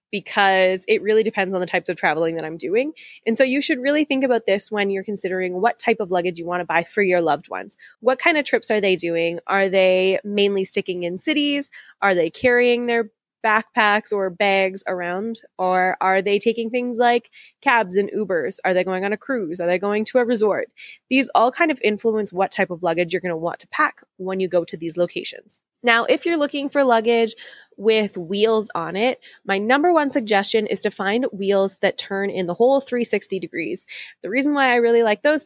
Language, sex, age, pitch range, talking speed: English, female, 20-39, 185-235 Hz, 220 wpm